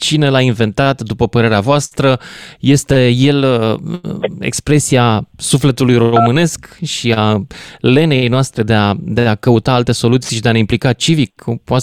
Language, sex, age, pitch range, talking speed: Romanian, male, 20-39, 115-150 Hz, 145 wpm